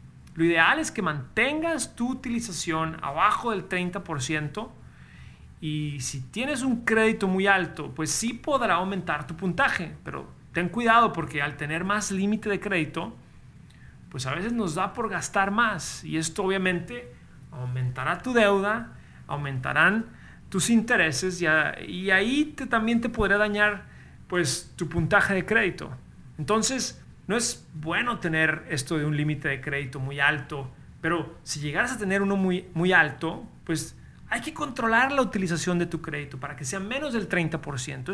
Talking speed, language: 155 wpm, Spanish